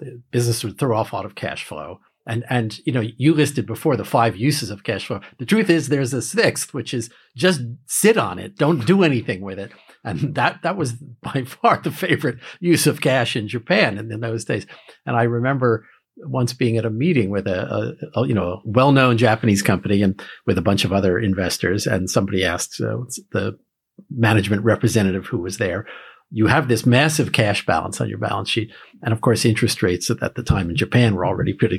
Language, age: English, 50-69